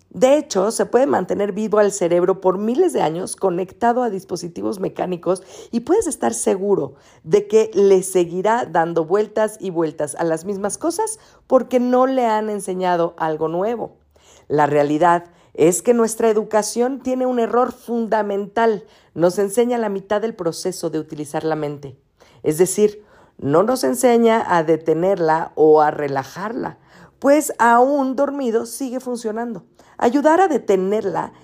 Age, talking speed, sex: 50-69, 145 wpm, female